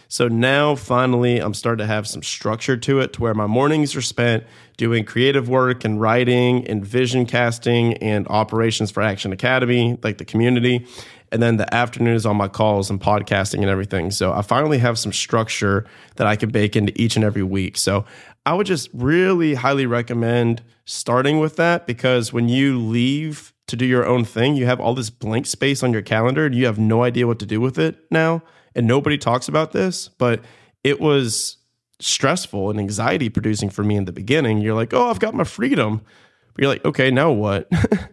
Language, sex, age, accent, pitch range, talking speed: English, male, 20-39, American, 110-130 Hz, 200 wpm